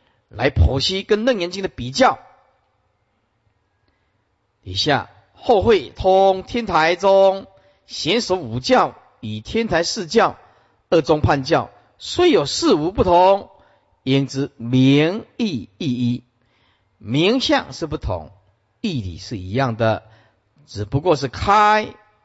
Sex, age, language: male, 50-69, Chinese